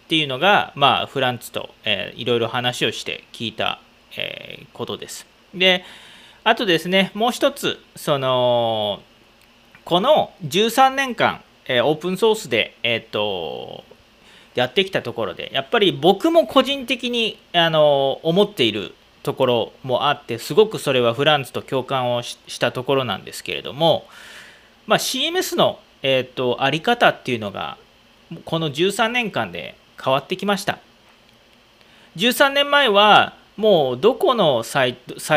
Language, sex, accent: Japanese, male, native